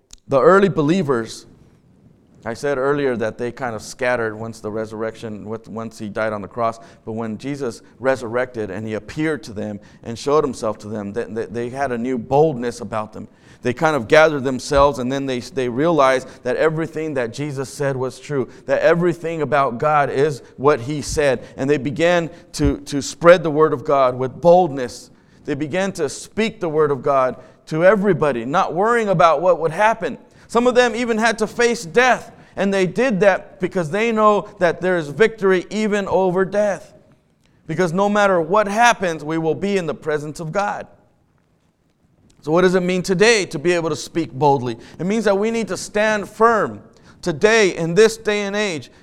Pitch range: 130-195 Hz